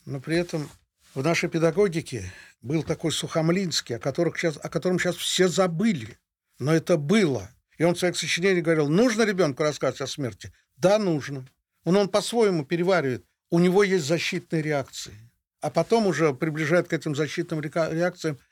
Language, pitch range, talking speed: Russian, 135-170 Hz, 155 wpm